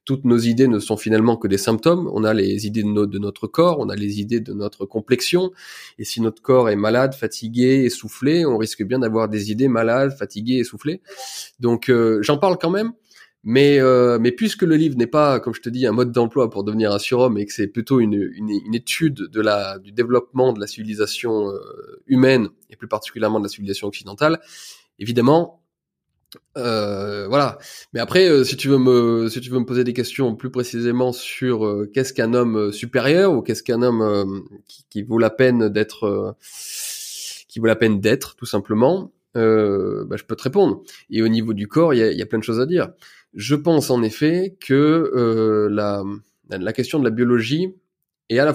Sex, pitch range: male, 105-135 Hz